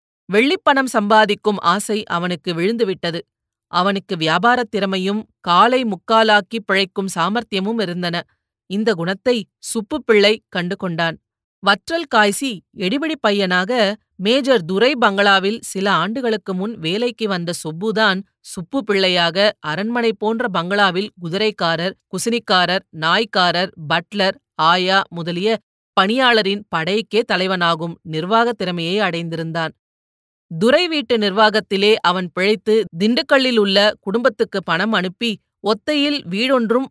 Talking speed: 95 wpm